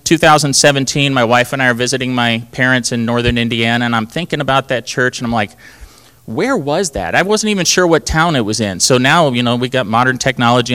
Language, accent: English, American